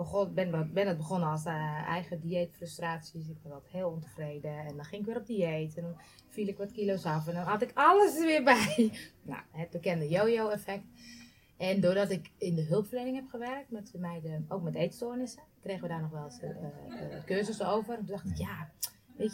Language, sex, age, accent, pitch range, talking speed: Dutch, female, 20-39, Dutch, 160-225 Hz, 215 wpm